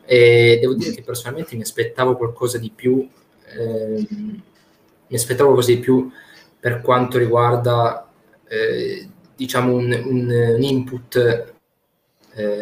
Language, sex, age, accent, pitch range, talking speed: Italian, male, 20-39, native, 110-130 Hz, 125 wpm